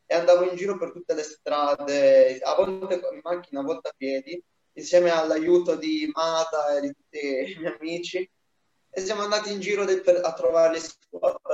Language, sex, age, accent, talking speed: Italian, male, 20-39, native, 190 wpm